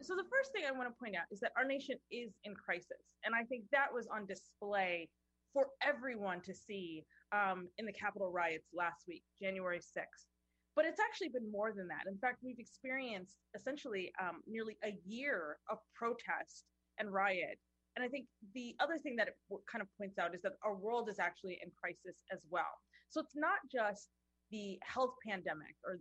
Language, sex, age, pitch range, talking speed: English, female, 20-39, 180-255 Hz, 195 wpm